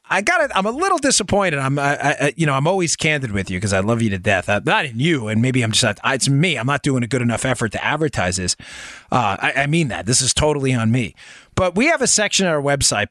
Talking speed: 290 wpm